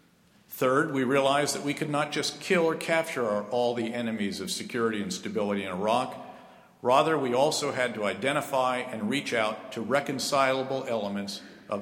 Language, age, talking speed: English, 50-69, 170 wpm